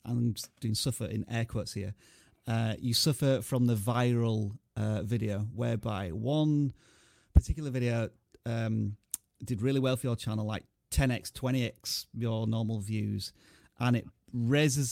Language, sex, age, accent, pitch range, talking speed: English, male, 30-49, British, 115-135 Hz, 140 wpm